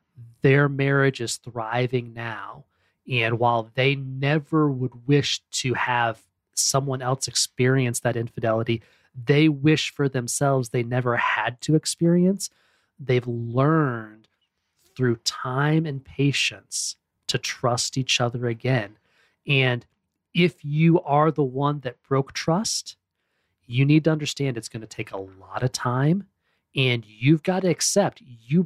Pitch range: 120-145 Hz